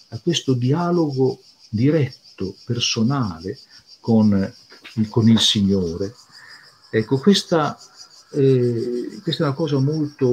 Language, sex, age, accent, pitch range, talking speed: Italian, male, 50-69, native, 105-140 Hz, 95 wpm